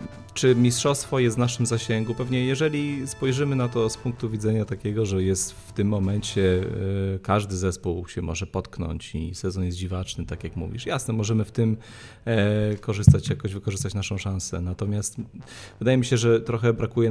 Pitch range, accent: 95-110 Hz, native